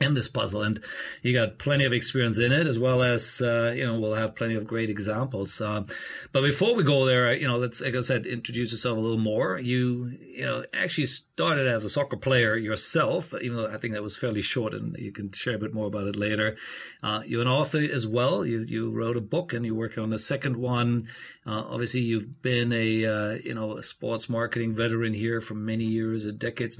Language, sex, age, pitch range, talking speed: English, male, 40-59, 110-130 Hz, 235 wpm